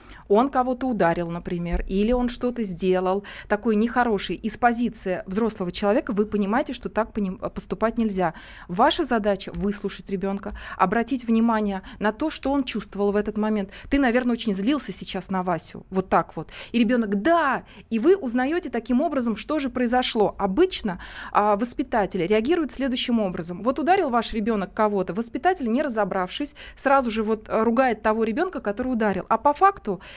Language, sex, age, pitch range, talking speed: Russian, female, 20-39, 200-255 Hz, 155 wpm